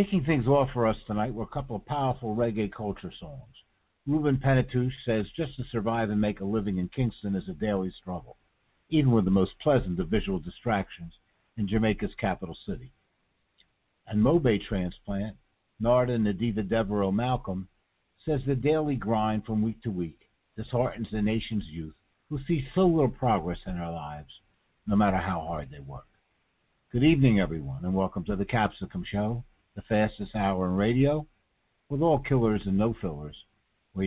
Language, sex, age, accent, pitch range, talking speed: English, male, 60-79, American, 95-125 Hz, 170 wpm